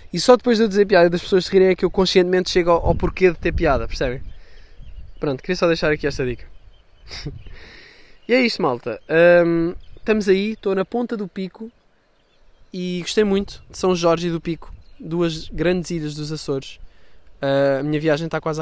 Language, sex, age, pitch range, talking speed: Portuguese, male, 20-39, 145-205 Hz, 195 wpm